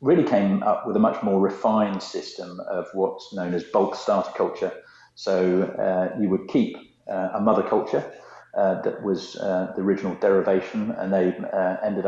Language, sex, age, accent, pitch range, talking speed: English, male, 40-59, British, 95-110 Hz, 180 wpm